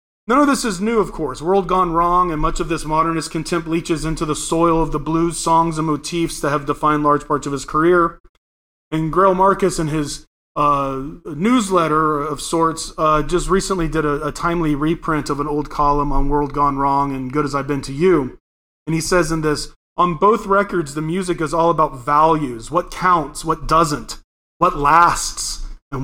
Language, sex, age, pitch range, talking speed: English, male, 30-49, 145-180 Hz, 200 wpm